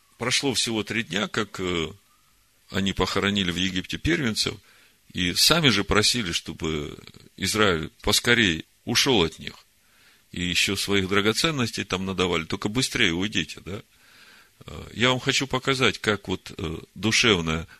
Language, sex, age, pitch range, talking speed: Russian, male, 40-59, 95-115 Hz, 125 wpm